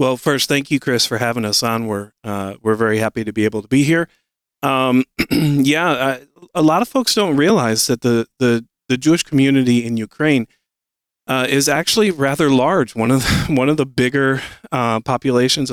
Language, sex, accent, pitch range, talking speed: English, male, American, 110-140 Hz, 195 wpm